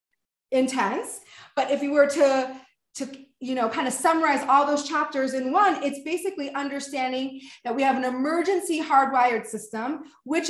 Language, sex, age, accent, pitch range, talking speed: English, female, 30-49, American, 260-325 Hz, 160 wpm